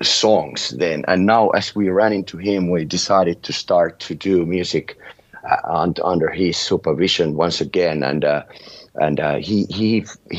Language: English